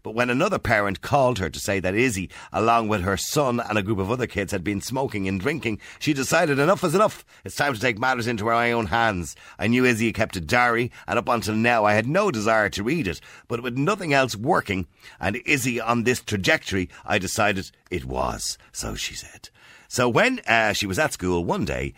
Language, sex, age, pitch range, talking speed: English, male, 50-69, 85-115 Hz, 225 wpm